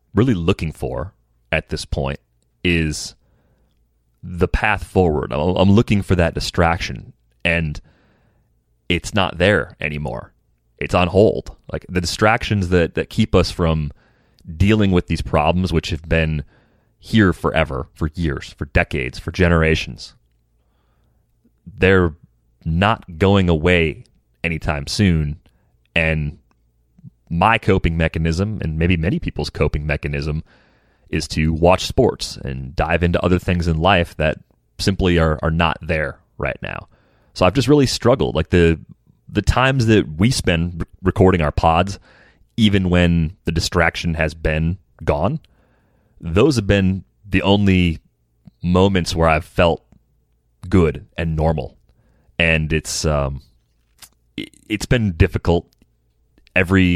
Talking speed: 130 wpm